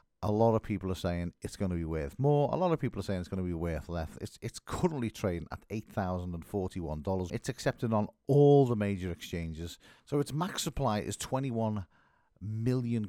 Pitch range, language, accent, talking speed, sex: 90-125 Hz, English, British, 200 wpm, male